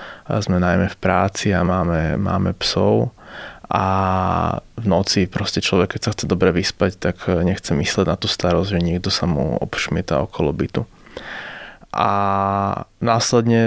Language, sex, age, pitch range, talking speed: Slovak, male, 20-39, 95-105 Hz, 150 wpm